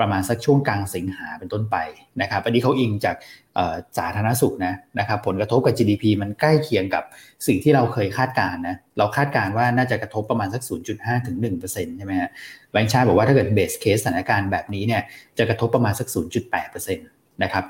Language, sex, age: Thai, male, 20-39